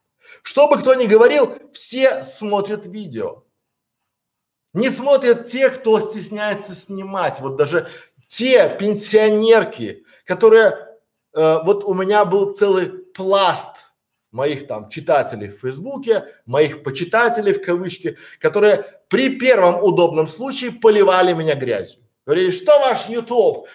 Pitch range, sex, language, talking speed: 180-245 Hz, male, Russian, 120 wpm